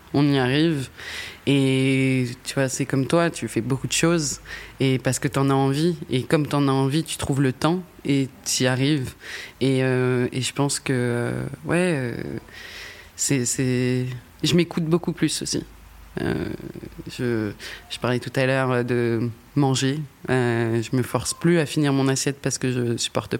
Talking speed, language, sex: 185 wpm, French, female